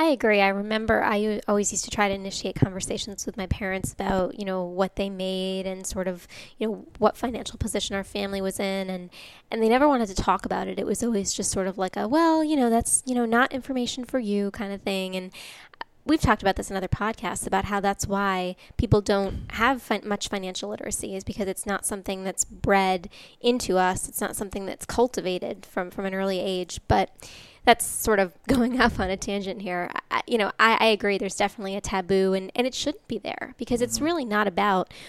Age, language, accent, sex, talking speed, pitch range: 10-29, English, American, female, 225 wpm, 195-225 Hz